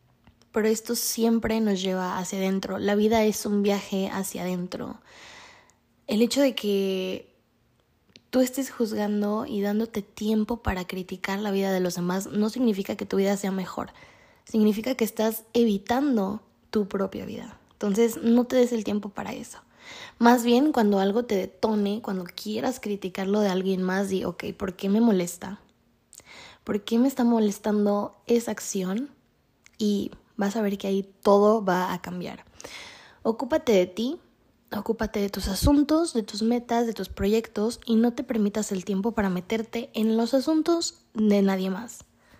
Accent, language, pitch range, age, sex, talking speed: Mexican, Spanish, 195-230 Hz, 20-39, female, 165 wpm